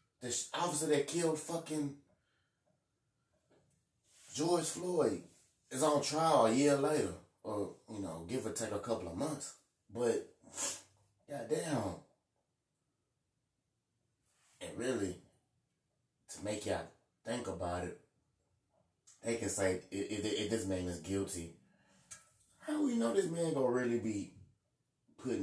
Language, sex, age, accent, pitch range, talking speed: English, male, 30-49, American, 95-125 Hz, 125 wpm